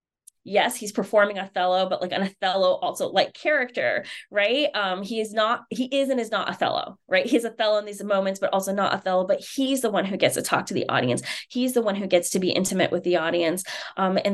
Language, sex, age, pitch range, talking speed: English, female, 20-39, 180-215 Hz, 235 wpm